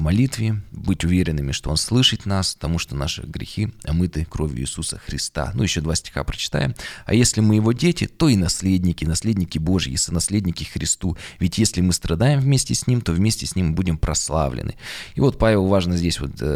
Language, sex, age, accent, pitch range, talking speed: Russian, male, 20-39, native, 80-105 Hz, 190 wpm